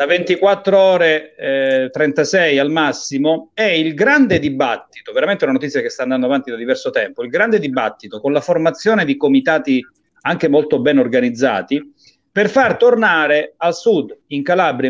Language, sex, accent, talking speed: Italian, male, native, 160 wpm